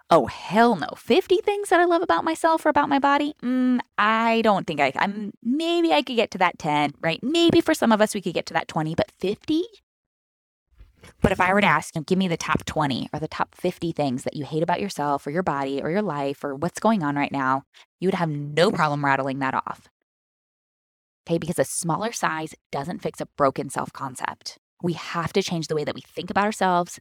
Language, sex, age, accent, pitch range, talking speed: English, female, 10-29, American, 150-210 Hz, 235 wpm